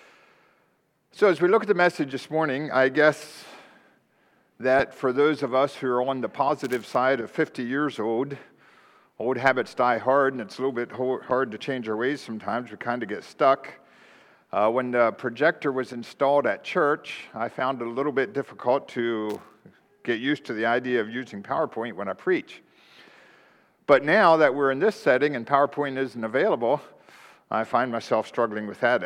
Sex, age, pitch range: male, 50-69, 120-150 Hz